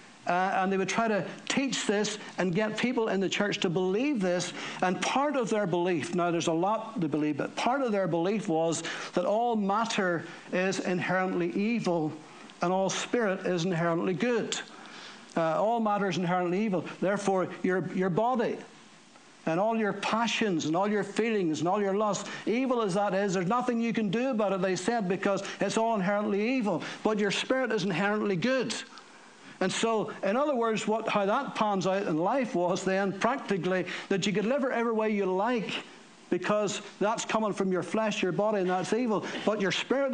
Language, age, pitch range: English, 60-79, 185-225 Hz